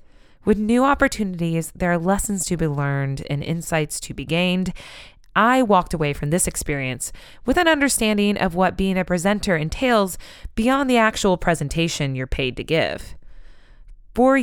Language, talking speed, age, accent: English, 160 wpm, 20-39, American